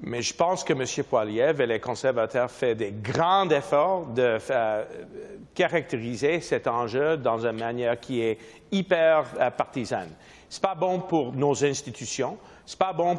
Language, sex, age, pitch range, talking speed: French, male, 50-69, 125-185 Hz, 160 wpm